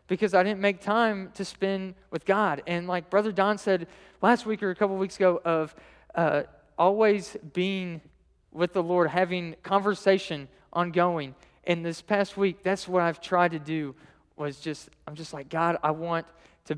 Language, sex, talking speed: English, male, 180 wpm